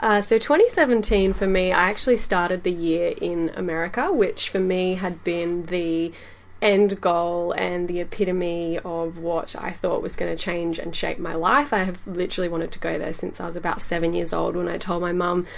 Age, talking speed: 20-39, 210 wpm